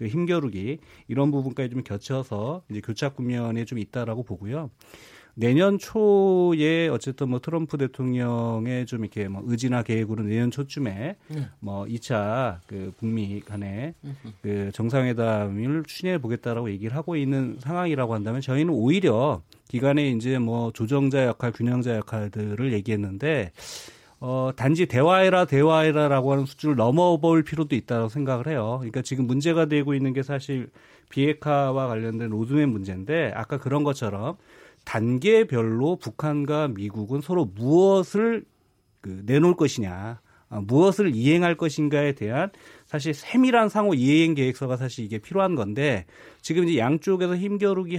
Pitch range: 115-155 Hz